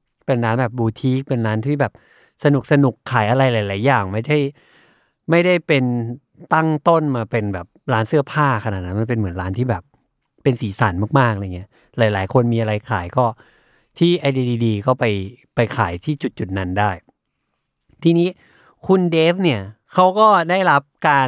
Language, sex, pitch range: Thai, male, 110-145 Hz